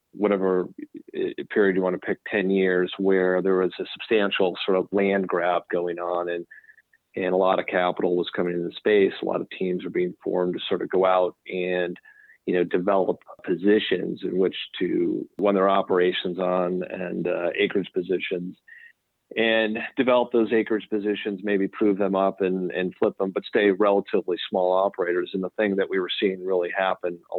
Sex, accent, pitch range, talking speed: male, American, 90-100 Hz, 185 wpm